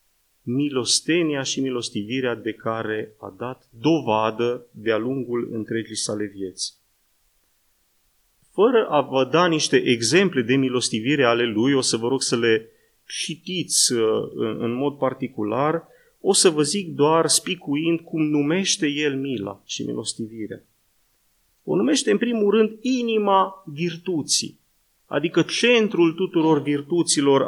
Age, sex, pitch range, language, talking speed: 30-49, male, 125-175 Hz, Romanian, 125 wpm